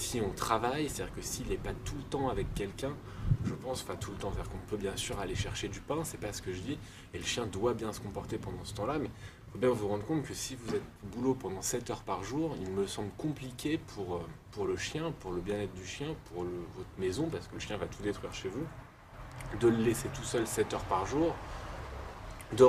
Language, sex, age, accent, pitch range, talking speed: French, male, 20-39, French, 95-125 Hz, 255 wpm